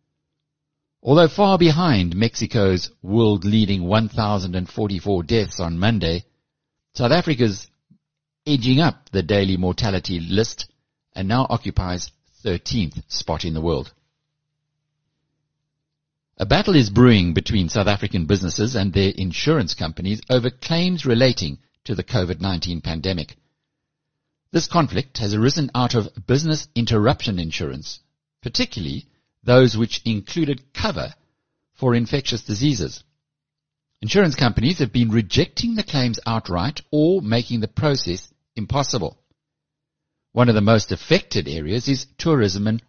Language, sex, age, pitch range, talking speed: English, male, 60-79, 95-150 Hz, 120 wpm